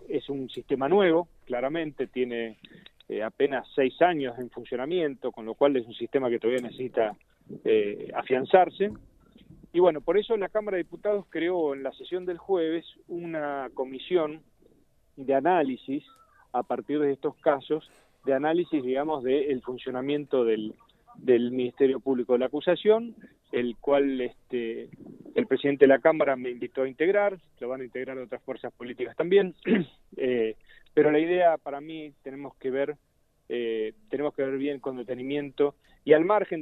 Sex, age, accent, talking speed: male, 40-59, Argentinian, 160 wpm